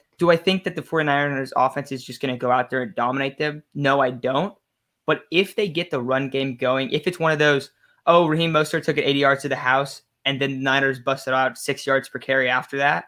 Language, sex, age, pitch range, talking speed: English, male, 20-39, 135-160 Hz, 250 wpm